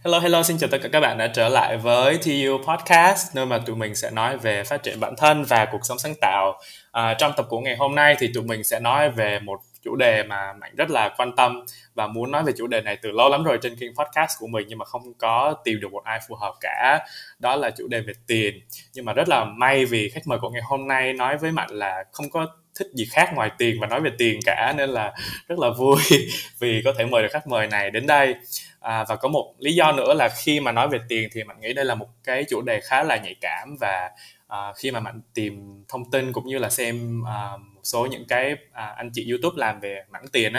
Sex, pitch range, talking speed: male, 110-140 Hz, 265 wpm